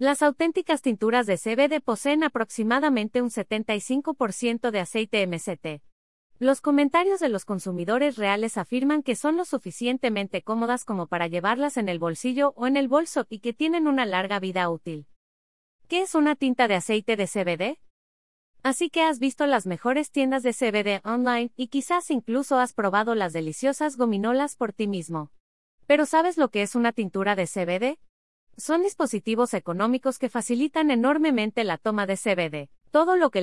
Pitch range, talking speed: 195-275 Hz, 165 wpm